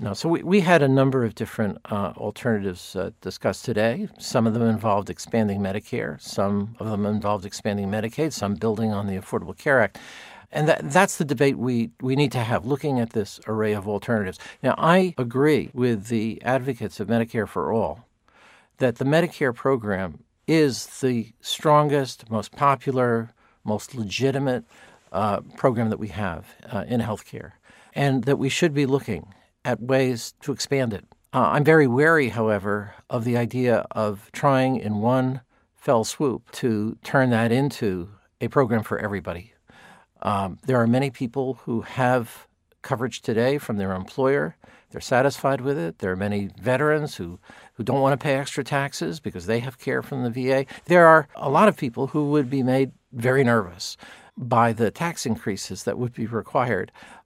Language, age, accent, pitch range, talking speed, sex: English, 50-69, American, 105-135 Hz, 175 wpm, male